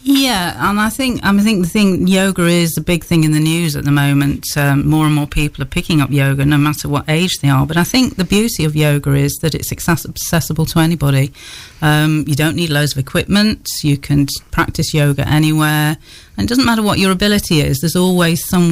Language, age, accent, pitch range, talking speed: English, 40-59, British, 145-175 Hz, 225 wpm